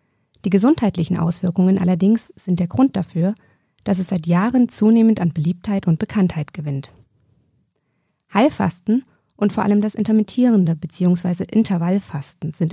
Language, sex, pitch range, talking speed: German, female, 170-210 Hz, 125 wpm